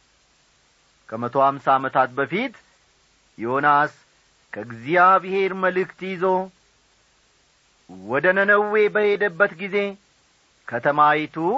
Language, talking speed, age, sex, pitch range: Amharic, 60 wpm, 50-69, male, 135-210 Hz